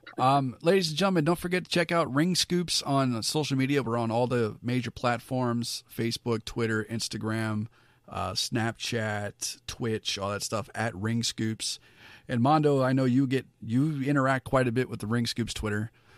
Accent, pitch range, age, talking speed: American, 110-135 Hz, 40-59, 180 wpm